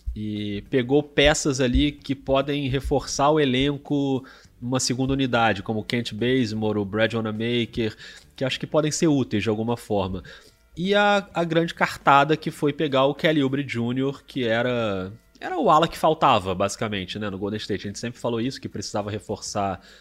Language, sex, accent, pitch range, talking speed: Portuguese, male, Brazilian, 105-135 Hz, 180 wpm